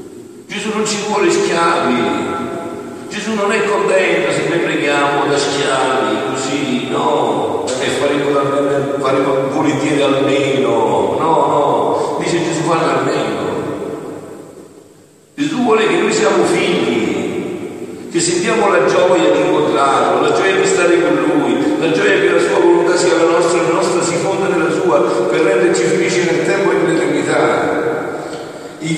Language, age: Italian, 50-69